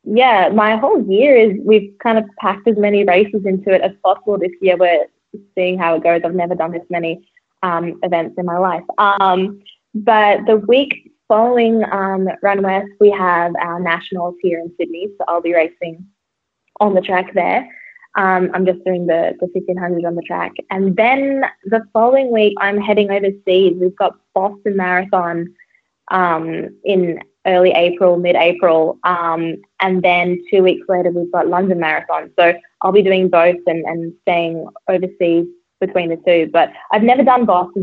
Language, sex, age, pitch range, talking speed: English, female, 20-39, 175-205 Hz, 175 wpm